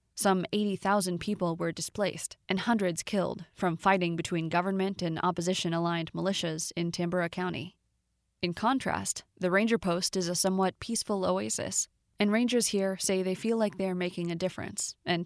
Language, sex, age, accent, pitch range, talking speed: English, female, 20-39, American, 175-200 Hz, 155 wpm